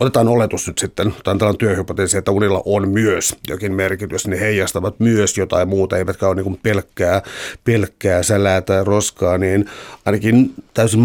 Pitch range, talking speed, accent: 95-110 Hz, 145 wpm, native